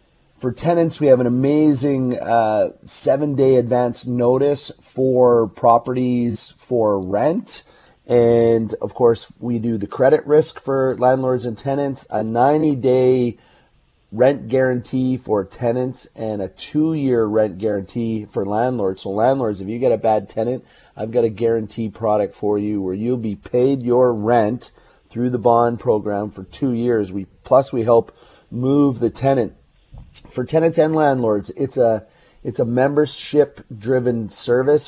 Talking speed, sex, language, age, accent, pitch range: 145 wpm, male, English, 30-49, American, 115-135 Hz